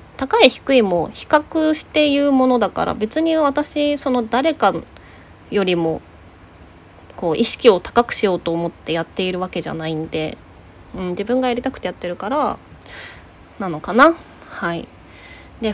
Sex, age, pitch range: female, 20-39, 160-255 Hz